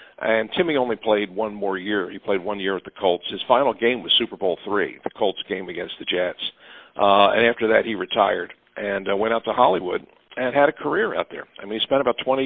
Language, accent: English, American